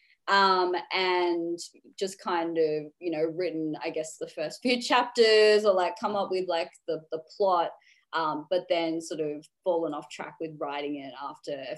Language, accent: English, Australian